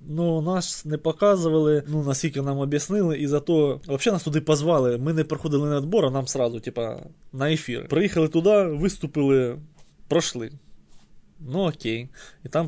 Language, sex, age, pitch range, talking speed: Ukrainian, male, 20-39, 135-170 Hz, 155 wpm